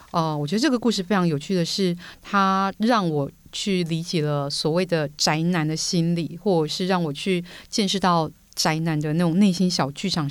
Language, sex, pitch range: Chinese, female, 155-195 Hz